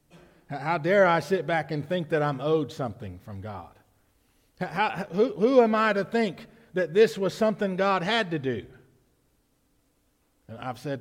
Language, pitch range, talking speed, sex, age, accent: English, 140-210 Hz, 170 wpm, male, 50-69, American